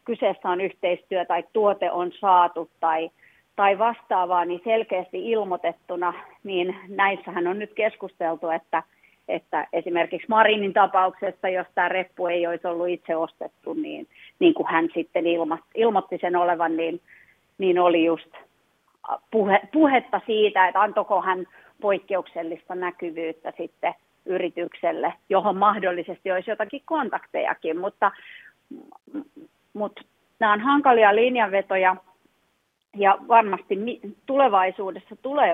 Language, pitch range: Finnish, 175-210 Hz